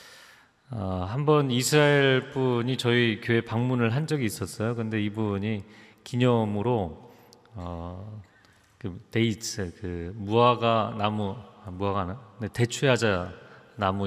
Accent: native